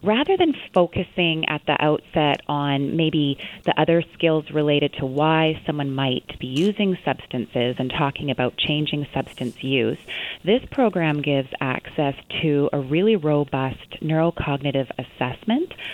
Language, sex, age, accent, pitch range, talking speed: English, female, 30-49, American, 140-180 Hz, 130 wpm